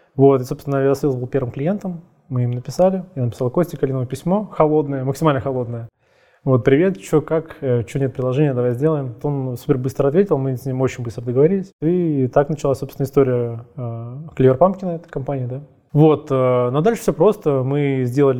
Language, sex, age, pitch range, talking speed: Russian, male, 20-39, 125-145 Hz, 185 wpm